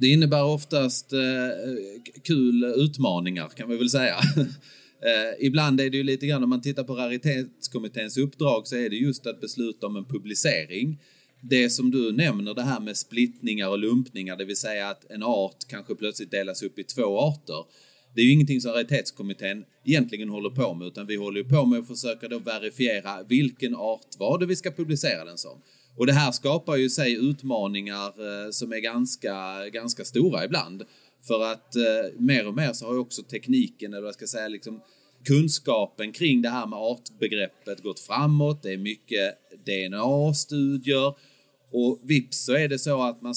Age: 30-49